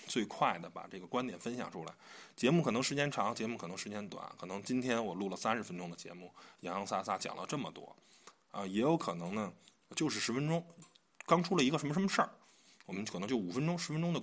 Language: Chinese